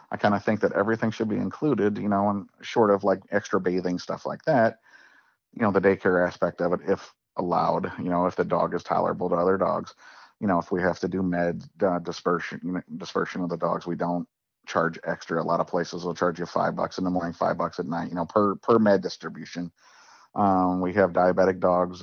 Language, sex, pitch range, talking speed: English, male, 90-105 Hz, 230 wpm